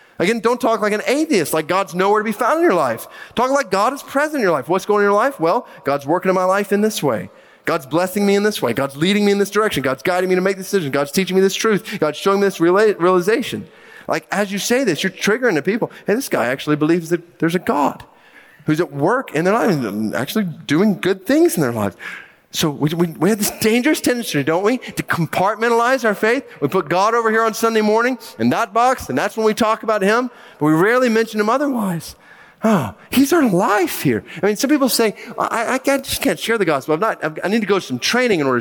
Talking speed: 255 wpm